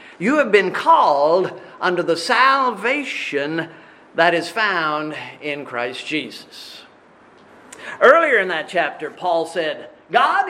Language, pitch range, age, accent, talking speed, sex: English, 180-305 Hz, 50-69, American, 115 wpm, male